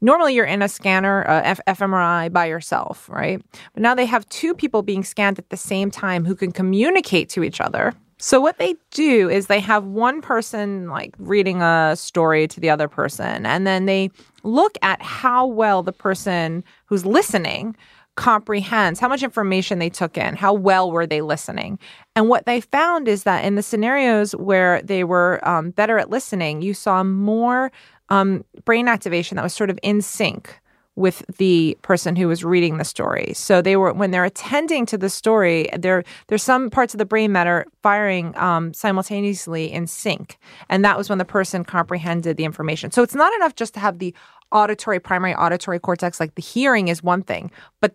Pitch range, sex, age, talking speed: 175-215 Hz, female, 30-49, 195 wpm